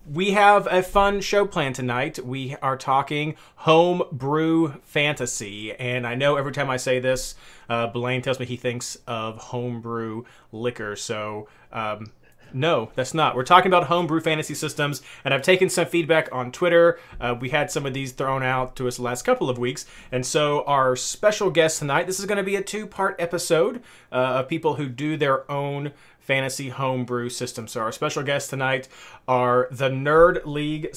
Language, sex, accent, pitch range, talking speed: English, male, American, 125-160 Hz, 185 wpm